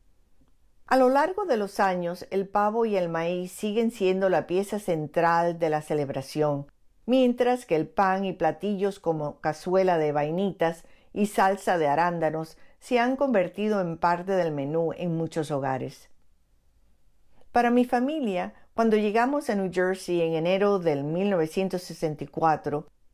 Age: 50-69